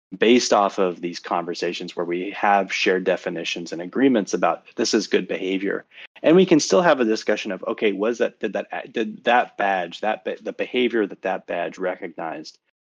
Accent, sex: American, male